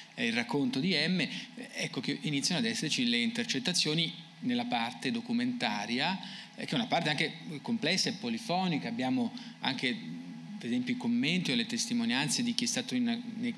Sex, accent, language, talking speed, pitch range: male, native, Italian, 160 wpm, 160-245 Hz